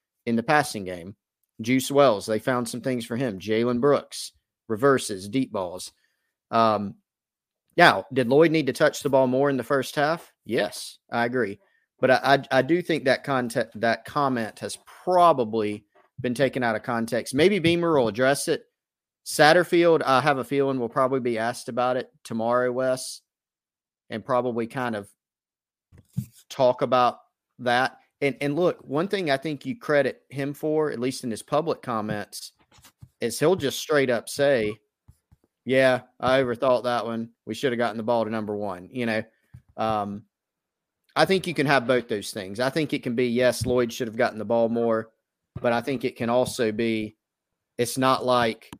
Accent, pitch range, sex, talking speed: American, 115-135 Hz, male, 180 wpm